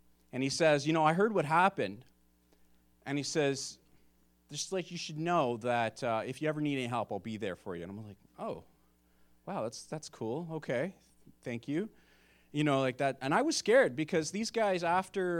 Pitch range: 115-160 Hz